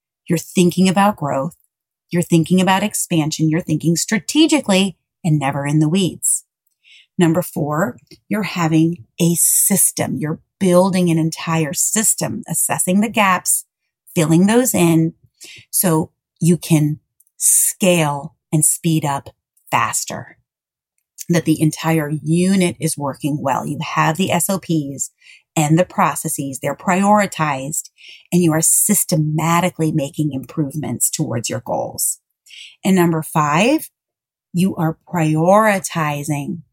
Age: 30-49